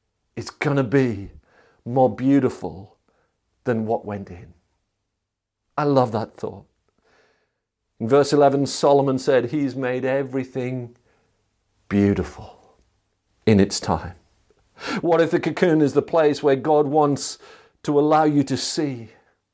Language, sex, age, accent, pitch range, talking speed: English, male, 50-69, British, 120-160 Hz, 125 wpm